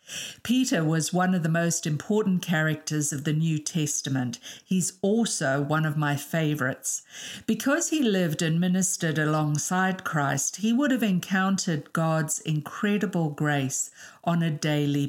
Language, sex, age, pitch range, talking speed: English, female, 50-69, 150-200 Hz, 140 wpm